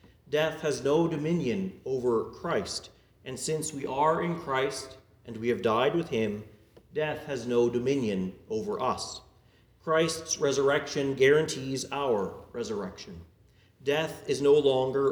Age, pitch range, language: 40-59, 115-165 Hz, English